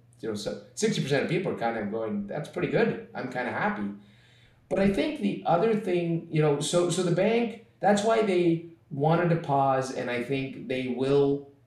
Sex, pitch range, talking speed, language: male, 120-165 Hz, 210 wpm, English